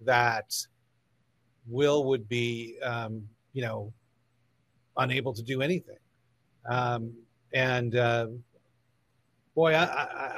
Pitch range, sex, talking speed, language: 125-170 Hz, male, 100 wpm, English